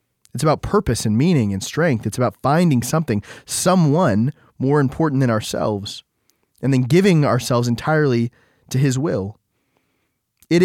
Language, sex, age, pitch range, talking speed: English, male, 20-39, 120-155 Hz, 140 wpm